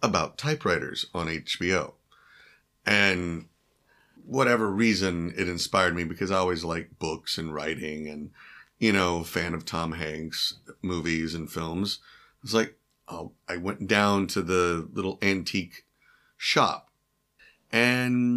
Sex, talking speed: male, 125 wpm